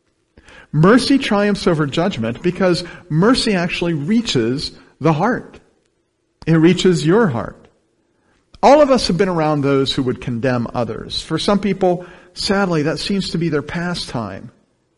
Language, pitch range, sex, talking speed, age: English, 145-205 Hz, male, 140 wpm, 50-69